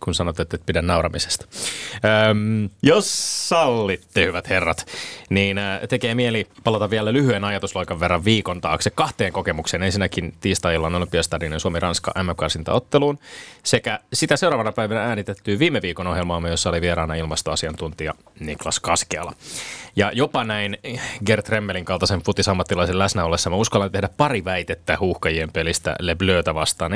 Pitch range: 85-110 Hz